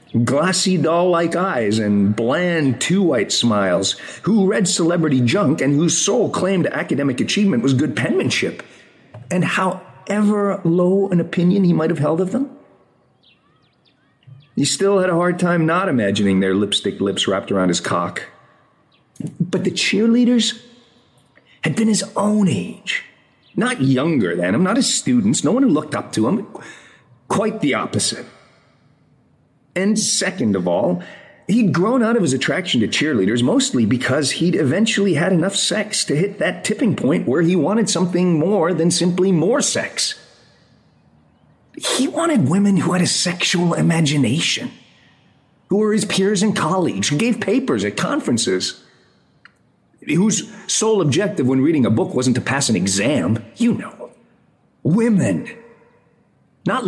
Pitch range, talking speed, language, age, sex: 145-205 Hz, 145 wpm, English, 40-59, male